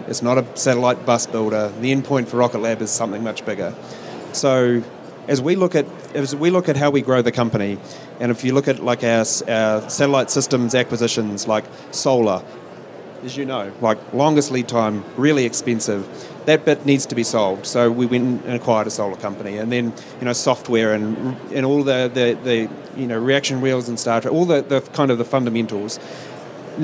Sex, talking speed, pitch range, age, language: male, 205 wpm, 115-140 Hz, 30-49, English